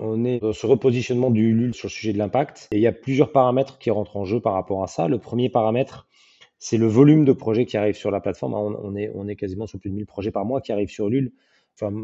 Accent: French